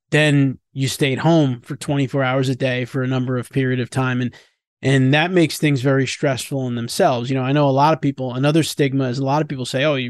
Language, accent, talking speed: English, American, 250 wpm